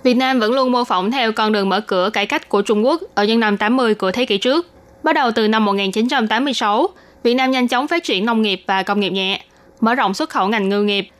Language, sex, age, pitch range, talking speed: Vietnamese, female, 20-39, 205-255 Hz, 255 wpm